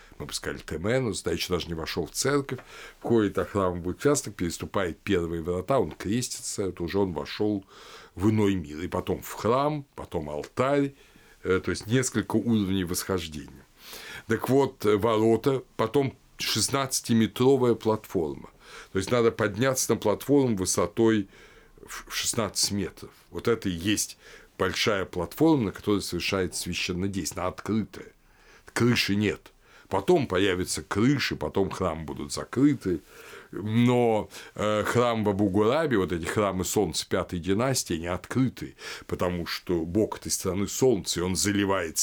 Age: 60-79